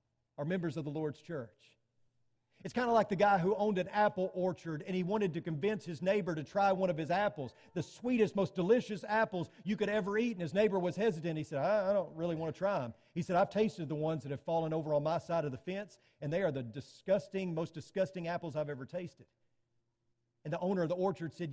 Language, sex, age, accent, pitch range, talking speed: English, male, 40-59, American, 150-205 Hz, 245 wpm